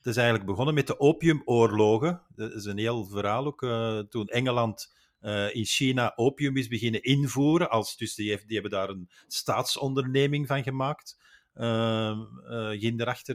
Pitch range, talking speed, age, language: 110-140 Hz, 155 wpm, 50-69, Dutch